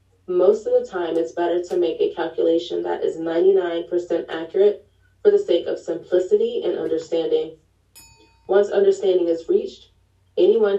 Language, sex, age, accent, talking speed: English, female, 20-39, American, 150 wpm